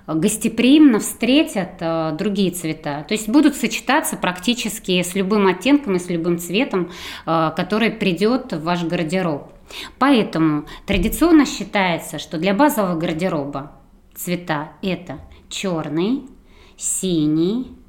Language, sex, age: Russian, female, 20-39